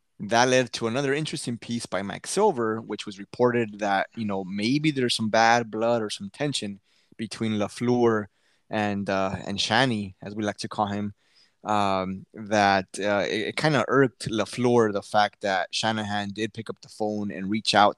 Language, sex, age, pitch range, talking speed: English, male, 20-39, 100-115 Hz, 185 wpm